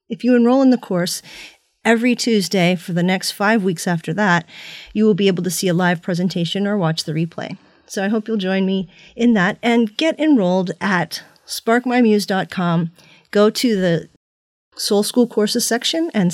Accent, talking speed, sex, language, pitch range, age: American, 180 wpm, female, English, 180-230 Hz, 30-49